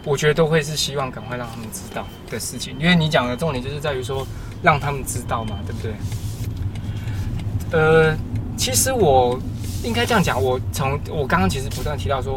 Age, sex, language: 20-39, male, Chinese